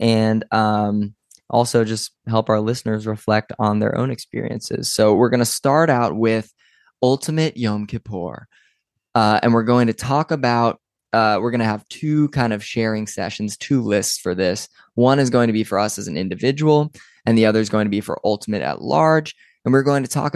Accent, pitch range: American, 105-120 Hz